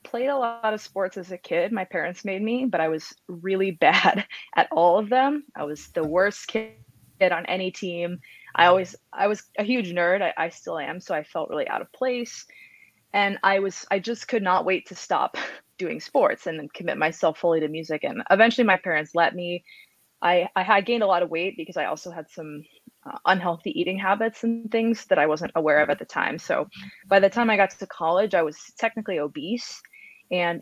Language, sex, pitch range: English, female, 165-220 Hz